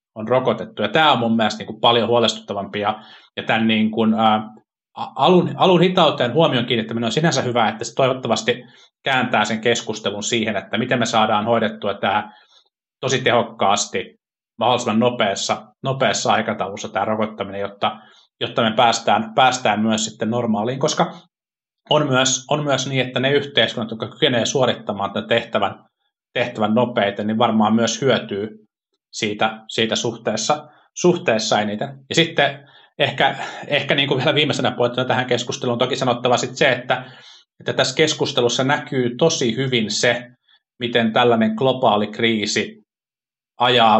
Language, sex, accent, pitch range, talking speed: Finnish, male, native, 110-130 Hz, 145 wpm